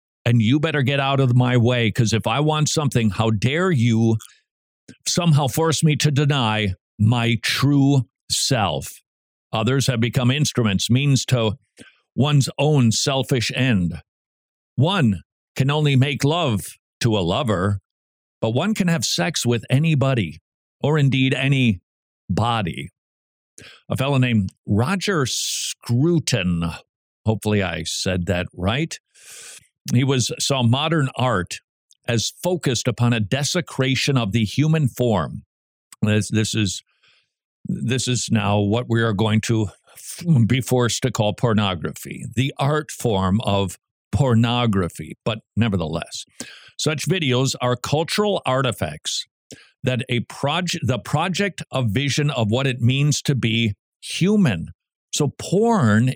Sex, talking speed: male, 130 wpm